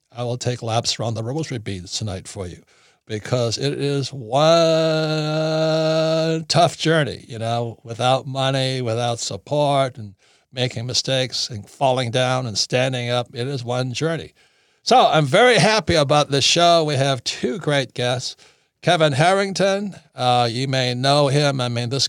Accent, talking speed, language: American, 160 wpm, English